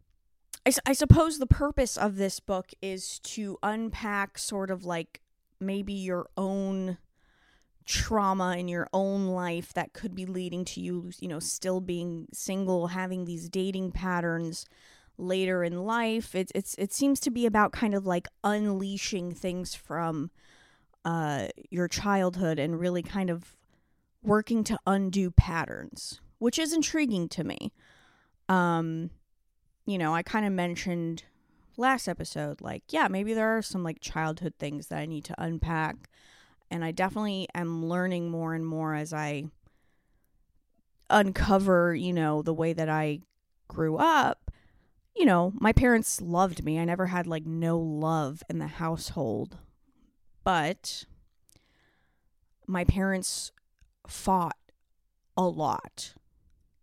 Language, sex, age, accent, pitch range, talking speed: English, female, 20-39, American, 165-200 Hz, 135 wpm